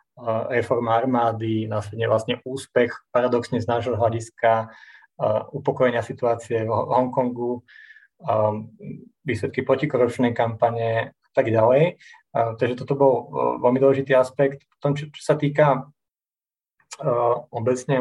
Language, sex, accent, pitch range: Czech, male, native, 115-130 Hz